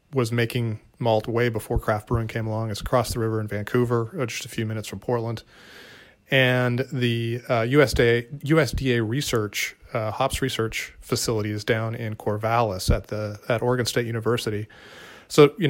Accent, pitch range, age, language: American, 105-125 Hz, 30-49, English